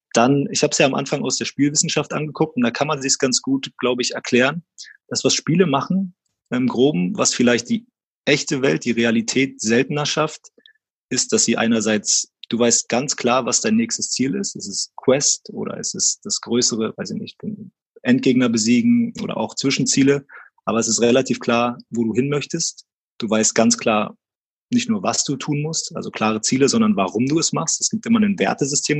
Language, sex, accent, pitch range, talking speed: German, male, German, 120-195 Hz, 205 wpm